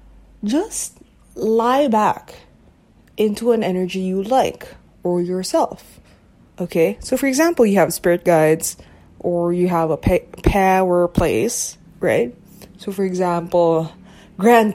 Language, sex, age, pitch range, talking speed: English, female, 20-39, 175-225 Hz, 120 wpm